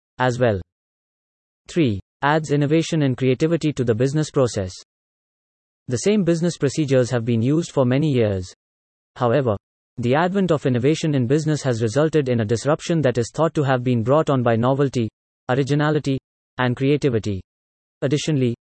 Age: 30-49